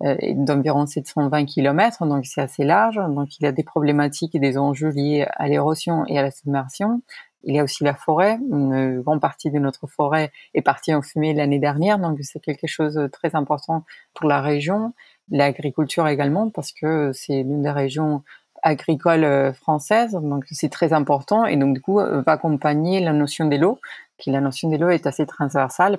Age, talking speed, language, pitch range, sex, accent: 30-49, 190 wpm, French, 140-165 Hz, female, French